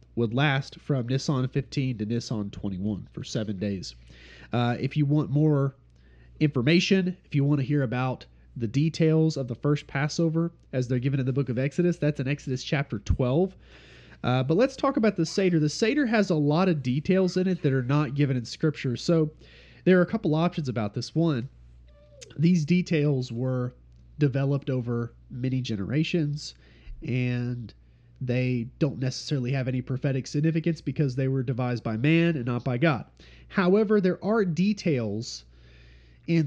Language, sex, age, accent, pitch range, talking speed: English, male, 30-49, American, 115-160 Hz, 170 wpm